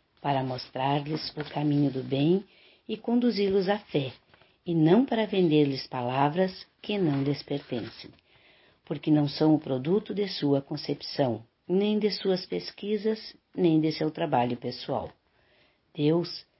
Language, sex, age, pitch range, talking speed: Portuguese, female, 50-69, 145-180 Hz, 135 wpm